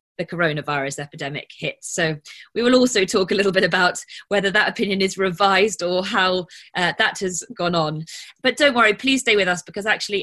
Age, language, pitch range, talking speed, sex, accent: 20-39, English, 165-205 Hz, 200 wpm, female, British